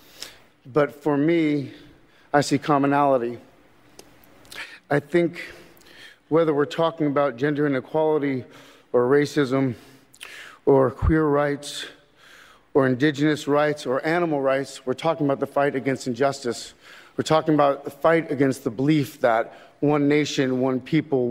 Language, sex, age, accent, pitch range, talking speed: English, male, 40-59, American, 130-150 Hz, 125 wpm